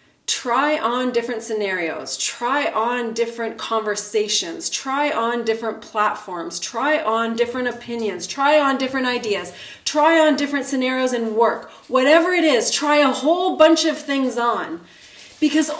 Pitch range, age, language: 215-275 Hz, 30-49, English